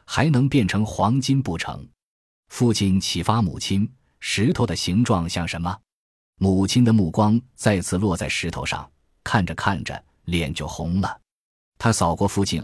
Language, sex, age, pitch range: Chinese, male, 20-39, 85-115 Hz